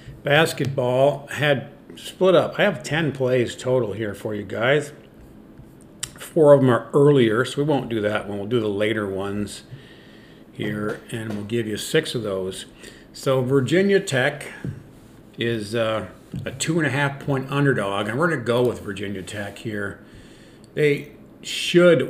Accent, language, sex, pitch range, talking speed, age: American, English, male, 110-140 Hz, 160 wpm, 50-69